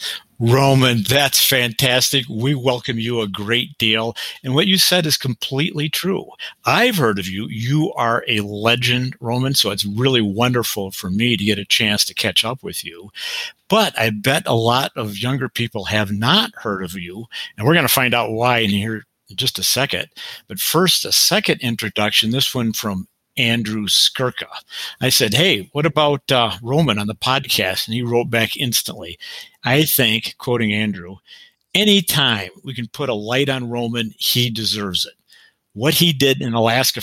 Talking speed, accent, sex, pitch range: 180 wpm, American, male, 110-135 Hz